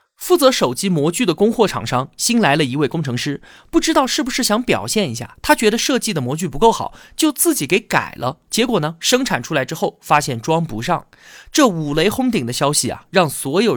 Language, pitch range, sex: Chinese, 140-225 Hz, male